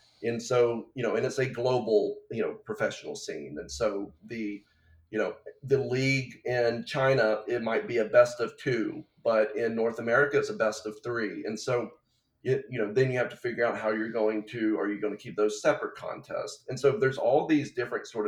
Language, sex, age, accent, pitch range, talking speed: English, male, 30-49, American, 110-135 Hz, 215 wpm